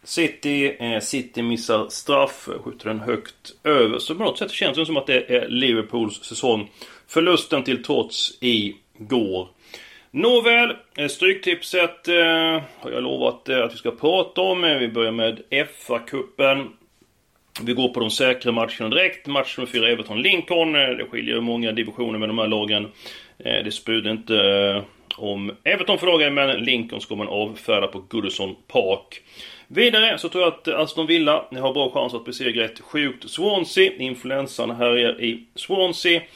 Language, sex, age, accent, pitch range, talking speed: Swedish, male, 30-49, native, 110-155 Hz, 150 wpm